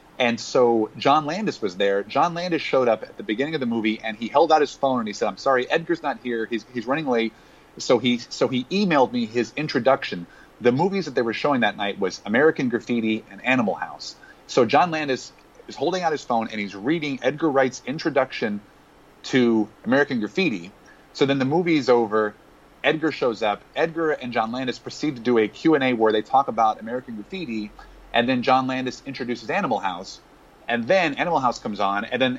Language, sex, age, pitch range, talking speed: English, male, 30-49, 110-145 Hz, 210 wpm